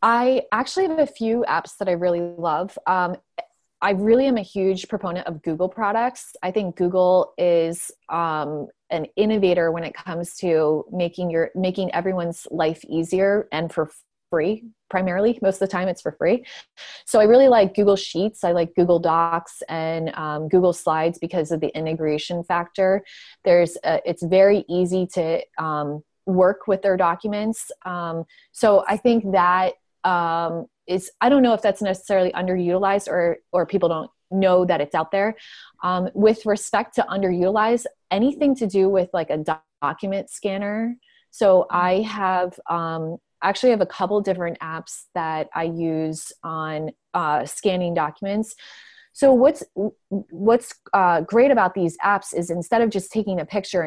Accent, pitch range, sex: American, 170-210 Hz, female